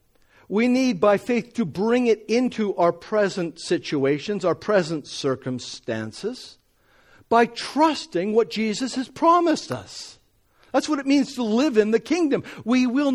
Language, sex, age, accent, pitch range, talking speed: English, male, 50-69, American, 165-250 Hz, 145 wpm